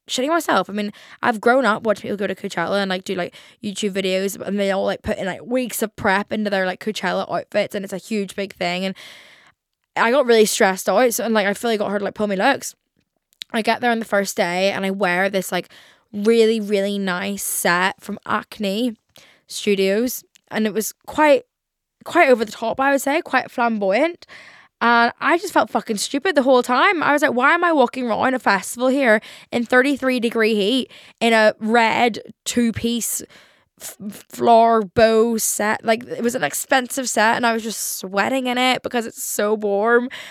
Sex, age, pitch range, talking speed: female, 10-29, 200-250 Hz, 205 wpm